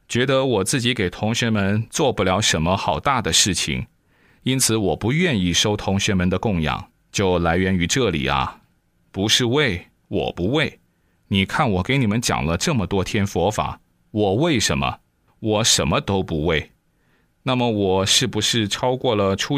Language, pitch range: Chinese, 90-125 Hz